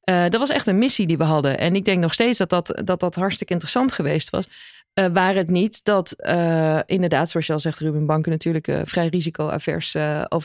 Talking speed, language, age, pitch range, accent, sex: 230 wpm, Dutch, 20-39, 170-215 Hz, Dutch, female